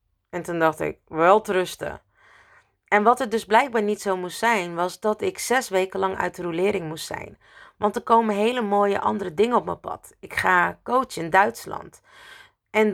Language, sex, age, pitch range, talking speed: Dutch, female, 30-49, 175-225 Hz, 200 wpm